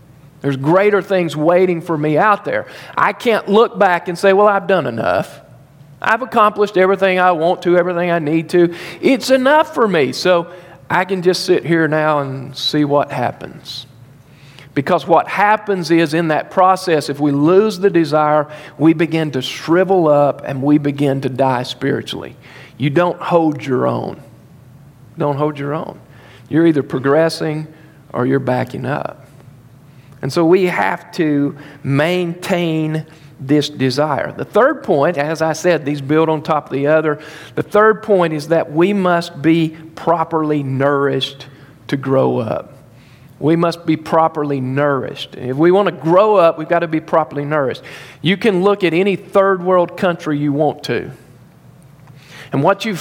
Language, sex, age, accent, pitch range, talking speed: English, male, 40-59, American, 140-175 Hz, 165 wpm